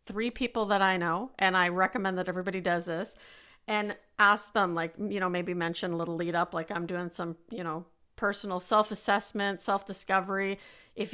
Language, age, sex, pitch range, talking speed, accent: English, 40-59, female, 175-210 Hz, 195 wpm, American